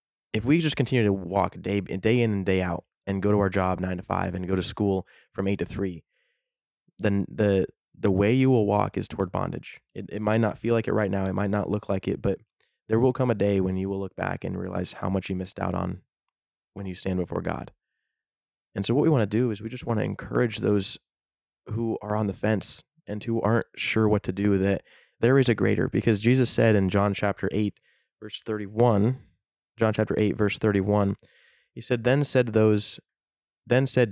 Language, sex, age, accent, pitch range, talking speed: English, male, 20-39, American, 95-115 Hz, 230 wpm